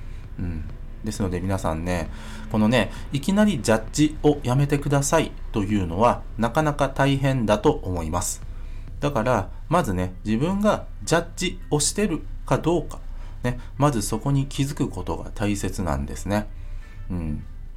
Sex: male